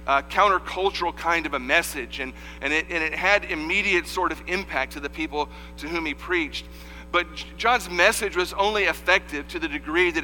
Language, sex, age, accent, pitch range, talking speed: English, male, 40-59, American, 150-185 Hz, 195 wpm